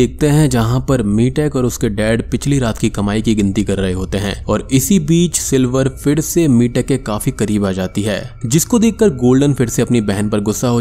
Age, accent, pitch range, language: 20-39, native, 105-140 Hz, Hindi